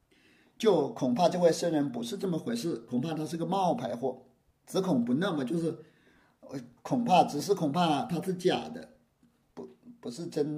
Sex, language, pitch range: male, Chinese, 135-195 Hz